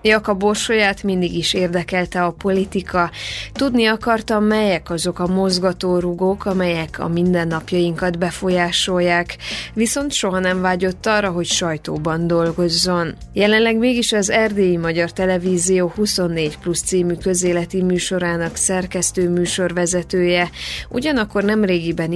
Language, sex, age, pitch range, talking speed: Hungarian, female, 20-39, 170-195 Hz, 105 wpm